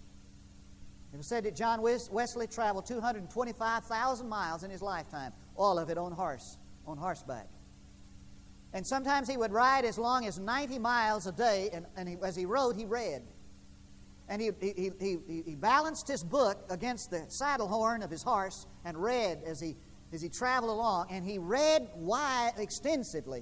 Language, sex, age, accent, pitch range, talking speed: English, male, 50-69, American, 155-235 Hz, 170 wpm